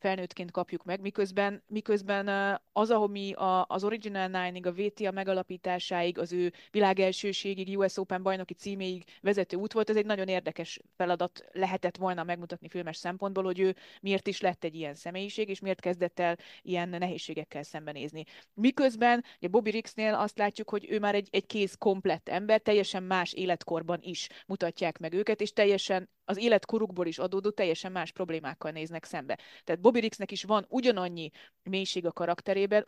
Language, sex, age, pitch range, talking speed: Hungarian, female, 20-39, 175-205 Hz, 170 wpm